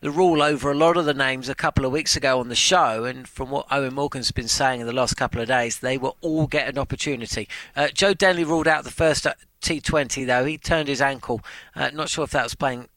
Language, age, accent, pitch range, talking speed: English, 40-59, British, 135-170 Hz, 255 wpm